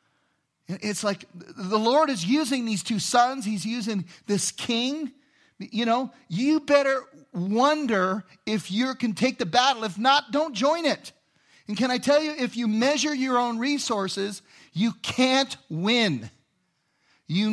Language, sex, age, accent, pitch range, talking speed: English, male, 40-59, American, 165-235 Hz, 150 wpm